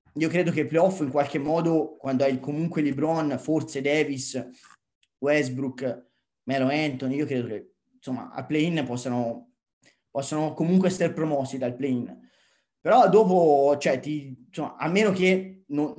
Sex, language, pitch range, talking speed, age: male, Italian, 130-165 Hz, 145 wpm, 20-39